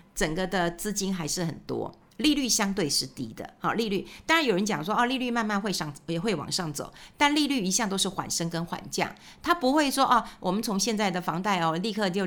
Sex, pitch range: female, 180-250 Hz